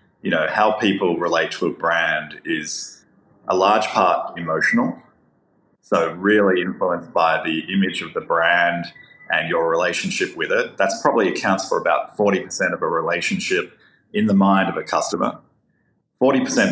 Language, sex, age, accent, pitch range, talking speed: English, male, 30-49, Australian, 85-105 Hz, 155 wpm